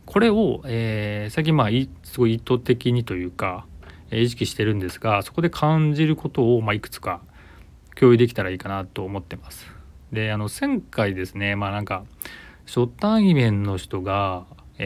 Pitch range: 95-125 Hz